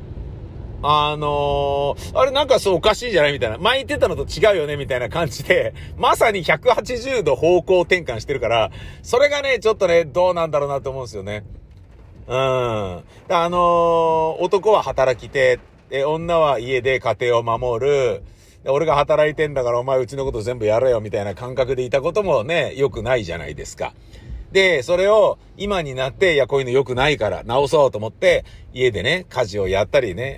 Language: Japanese